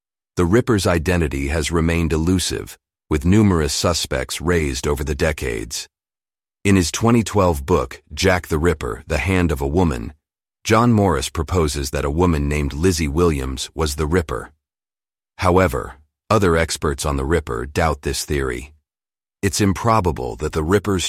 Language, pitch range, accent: English, 75-90 Hz, American